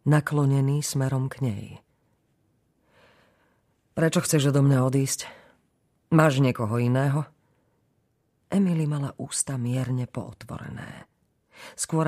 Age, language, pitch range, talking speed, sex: 40-59, Slovak, 120-155 Hz, 90 wpm, female